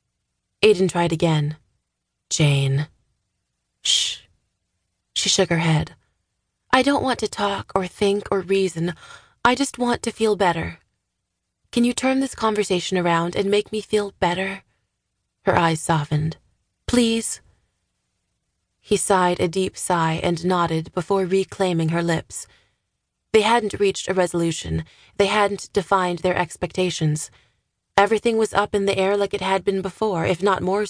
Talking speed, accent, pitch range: 145 wpm, American, 170-200 Hz